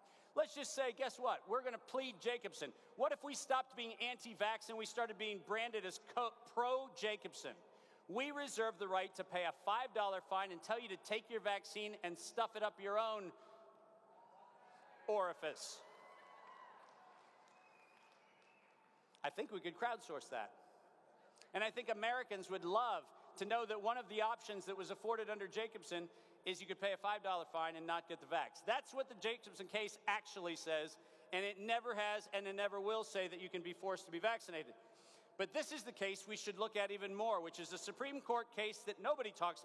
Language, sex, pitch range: English, male, 190-230 Hz